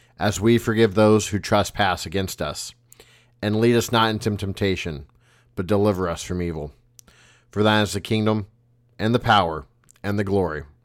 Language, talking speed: English, 165 wpm